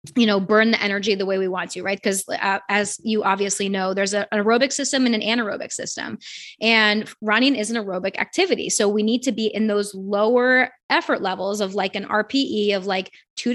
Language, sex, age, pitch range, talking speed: English, female, 20-39, 205-230 Hz, 215 wpm